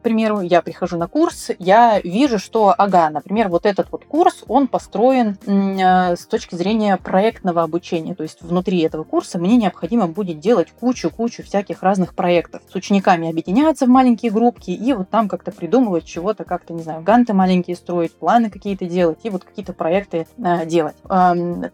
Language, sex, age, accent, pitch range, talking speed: Russian, female, 20-39, native, 170-220 Hz, 165 wpm